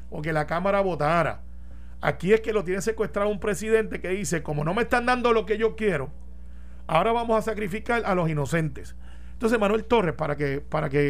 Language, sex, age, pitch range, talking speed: Spanish, male, 30-49, 140-200 Hz, 205 wpm